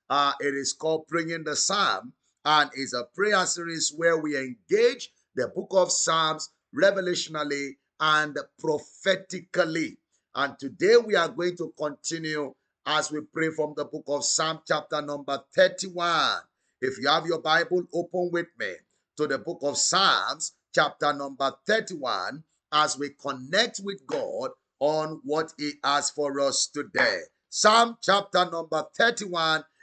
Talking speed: 145 wpm